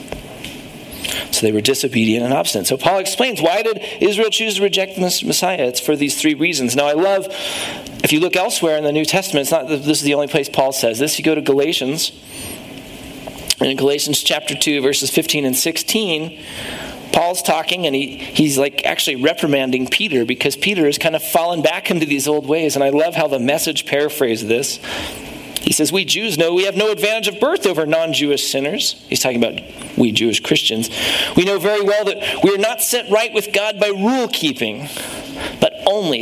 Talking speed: 200 wpm